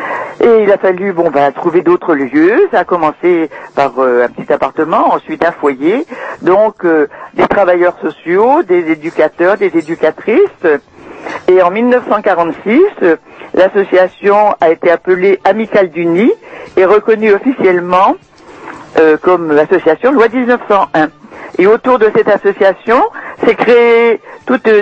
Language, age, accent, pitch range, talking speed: French, 60-79, French, 170-250 Hz, 130 wpm